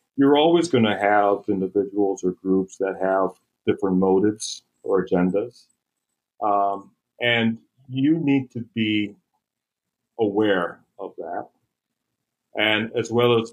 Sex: male